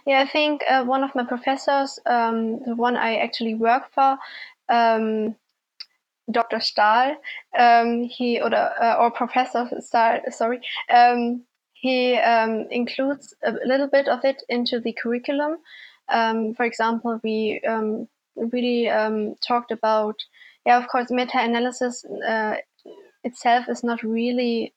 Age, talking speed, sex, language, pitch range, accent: 20-39, 135 wpm, female, English, 225-255 Hz, German